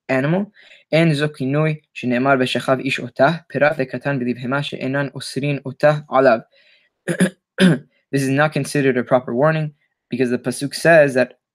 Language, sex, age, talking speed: English, male, 20-39, 75 wpm